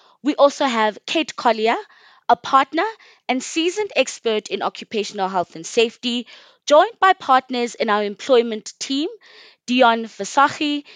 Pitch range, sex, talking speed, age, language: 210-290 Hz, female, 130 wpm, 20-39, English